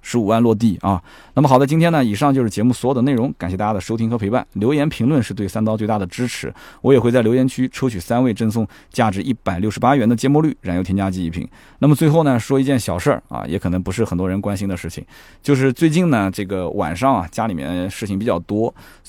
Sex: male